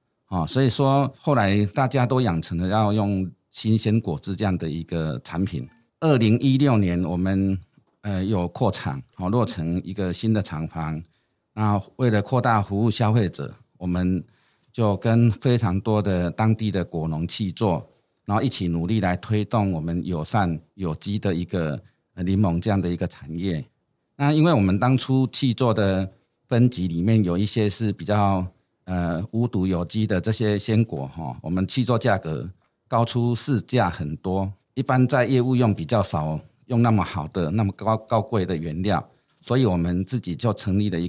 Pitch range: 90-115 Hz